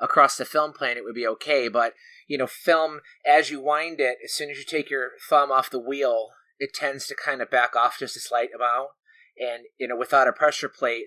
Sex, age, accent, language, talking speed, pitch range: male, 30-49, American, English, 240 wpm, 120-145 Hz